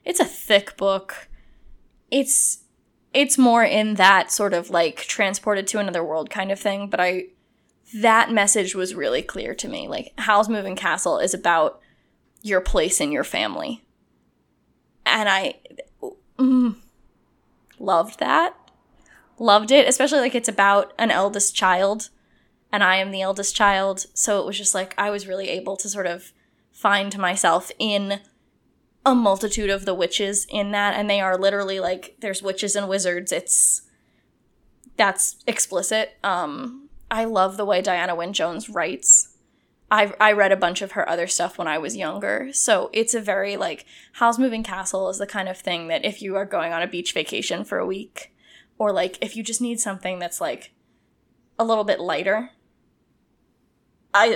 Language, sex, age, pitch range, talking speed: English, female, 10-29, 190-230 Hz, 170 wpm